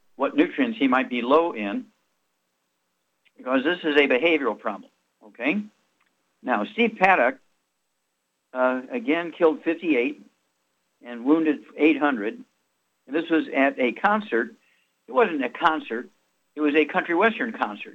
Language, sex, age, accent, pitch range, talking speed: English, male, 60-79, American, 120-195 Hz, 135 wpm